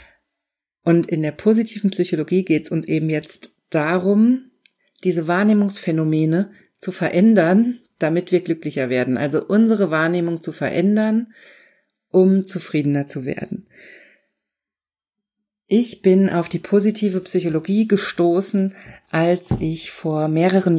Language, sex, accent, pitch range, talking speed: German, female, German, 160-195 Hz, 115 wpm